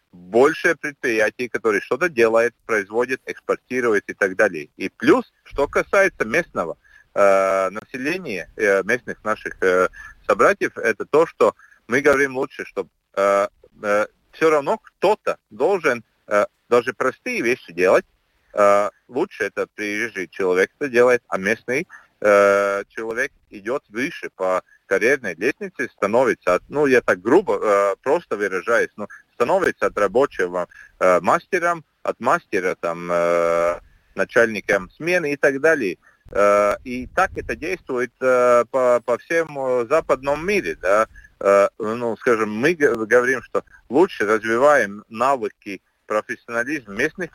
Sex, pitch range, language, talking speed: male, 105-170 Hz, Russian, 130 wpm